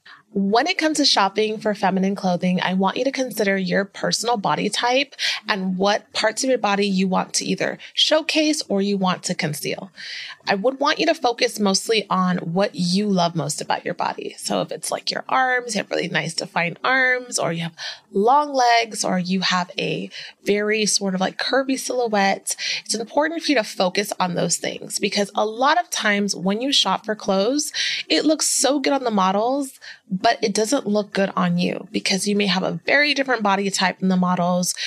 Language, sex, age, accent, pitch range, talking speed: English, female, 30-49, American, 190-250 Hz, 205 wpm